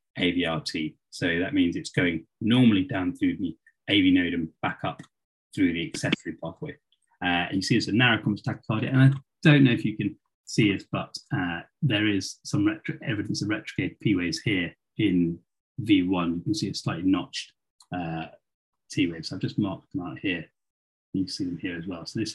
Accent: British